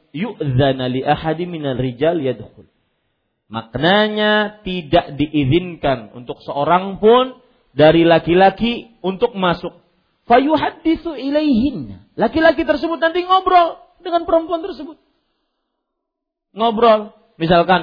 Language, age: Malay, 40-59